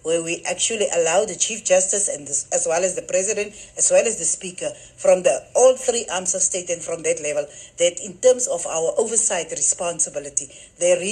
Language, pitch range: English, 180-245 Hz